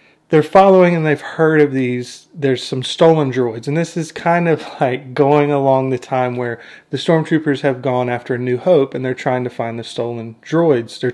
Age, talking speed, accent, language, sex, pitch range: 30-49, 210 wpm, American, English, male, 135-185 Hz